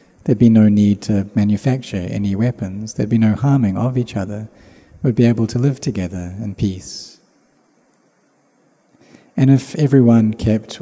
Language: English